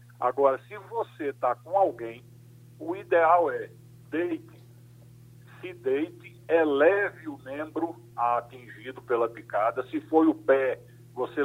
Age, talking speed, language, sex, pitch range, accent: 60-79, 120 wpm, Portuguese, male, 120-155 Hz, Brazilian